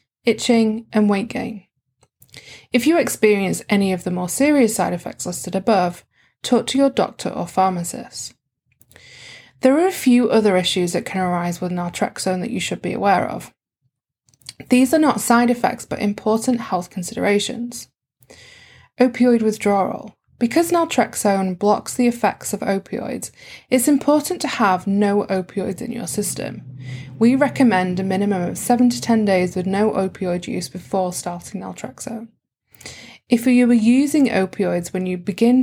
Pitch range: 180-240 Hz